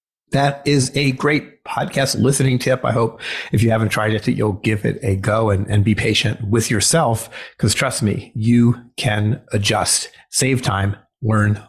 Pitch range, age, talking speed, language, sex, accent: 110-140 Hz, 30-49, 175 wpm, English, male, American